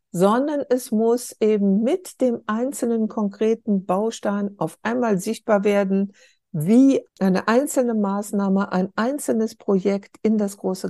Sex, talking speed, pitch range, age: female, 125 wpm, 180-225 Hz, 60-79